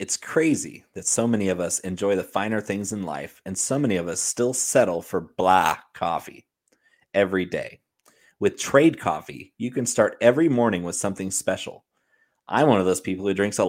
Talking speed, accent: 195 wpm, American